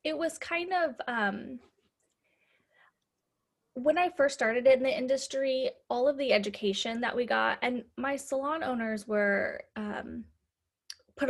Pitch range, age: 200-260 Hz, 10-29